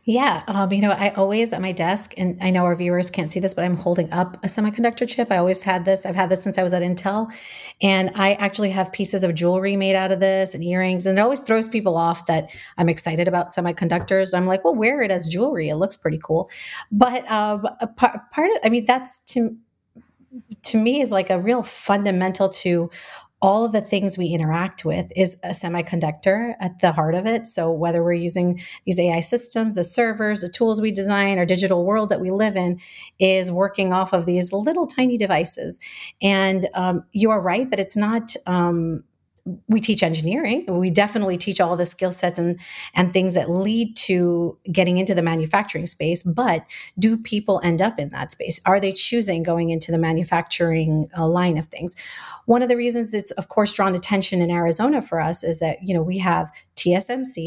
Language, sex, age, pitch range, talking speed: English, female, 30-49, 175-210 Hz, 210 wpm